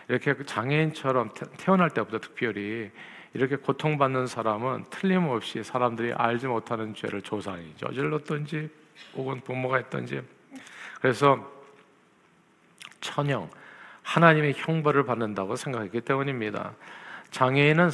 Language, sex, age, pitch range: Korean, male, 50-69, 115-145 Hz